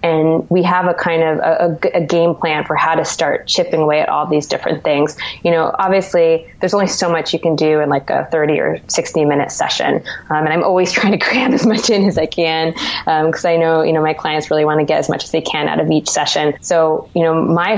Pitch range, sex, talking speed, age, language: 155-180 Hz, female, 260 wpm, 20-39, English